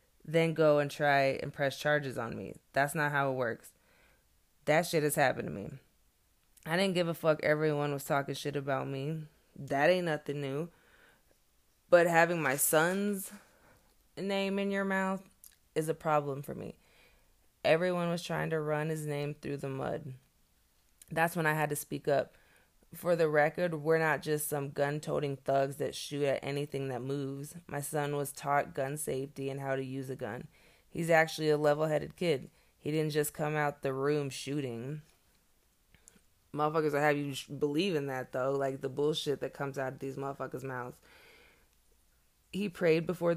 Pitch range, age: 140-160 Hz, 20-39